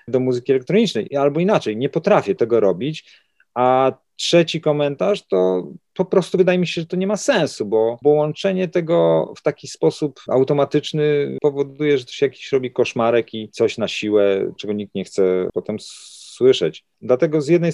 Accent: native